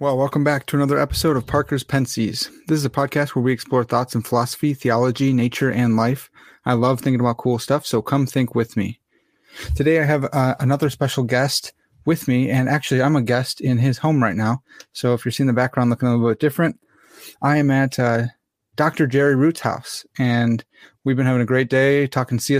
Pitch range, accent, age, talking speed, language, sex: 125-150 Hz, American, 30-49, 215 wpm, English, male